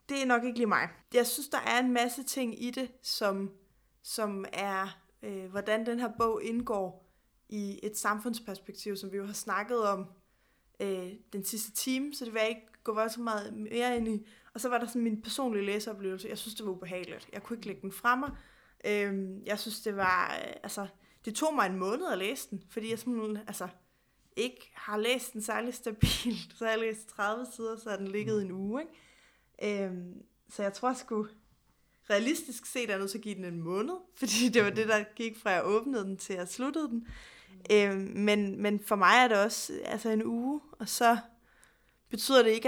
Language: Danish